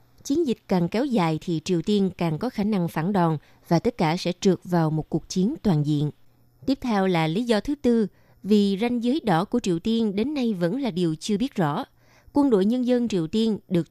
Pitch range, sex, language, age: 170-235 Hz, female, Vietnamese, 20-39